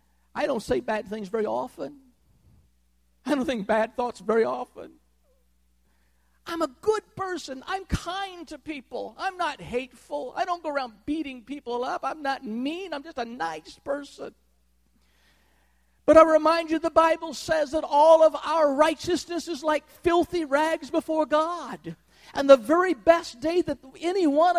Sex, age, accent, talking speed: male, 50-69, American, 160 wpm